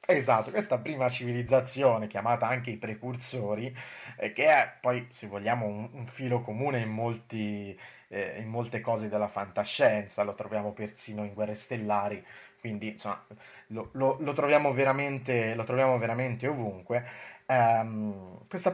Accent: native